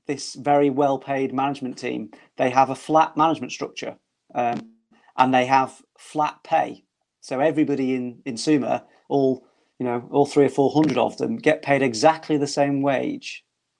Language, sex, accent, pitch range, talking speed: English, male, British, 135-155 Hz, 165 wpm